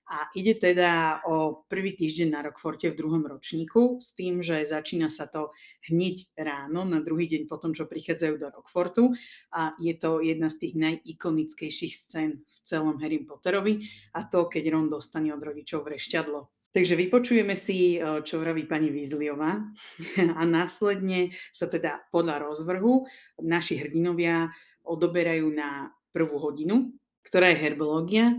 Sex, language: female, Slovak